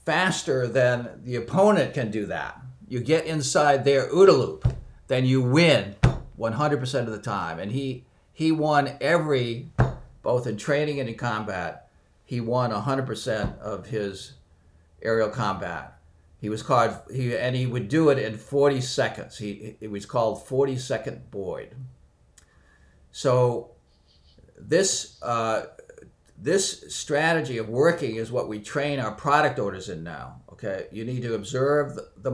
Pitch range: 105-140 Hz